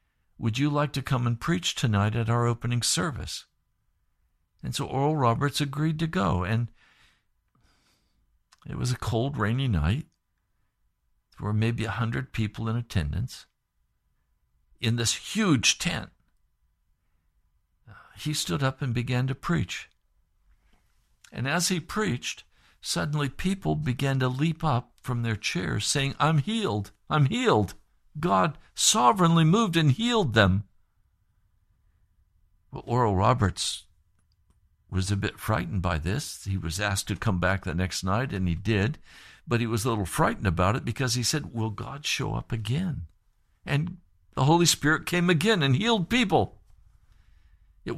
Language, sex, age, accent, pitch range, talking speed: English, male, 60-79, American, 95-140 Hz, 145 wpm